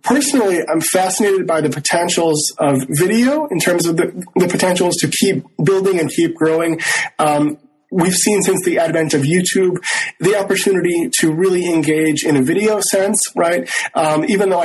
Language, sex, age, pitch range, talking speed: English, male, 20-39, 155-190 Hz, 170 wpm